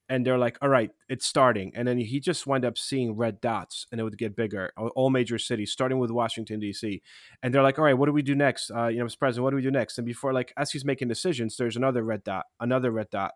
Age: 30-49